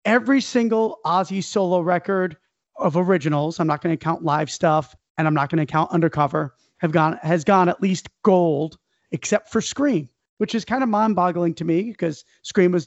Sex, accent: male, American